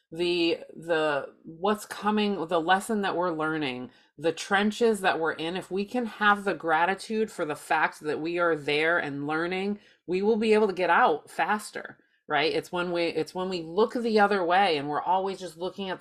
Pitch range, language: 145-190 Hz, English